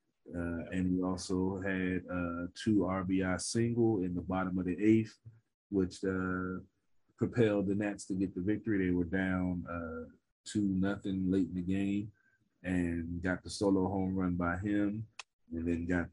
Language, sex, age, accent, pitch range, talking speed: English, male, 30-49, American, 85-95 Hz, 165 wpm